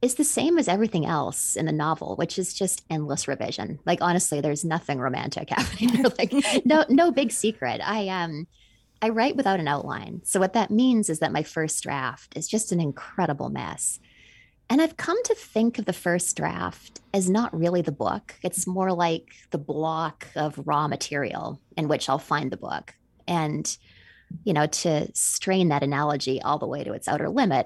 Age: 20-39